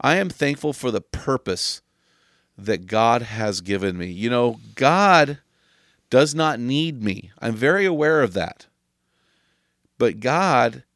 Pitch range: 110-160 Hz